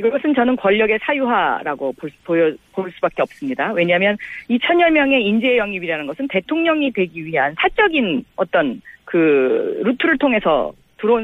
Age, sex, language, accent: 40-59, female, Korean, native